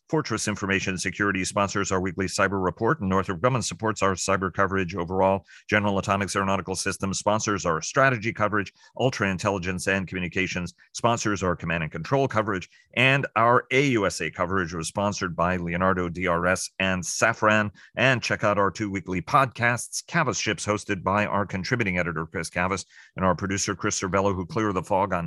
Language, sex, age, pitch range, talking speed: English, male, 40-59, 95-110 Hz, 170 wpm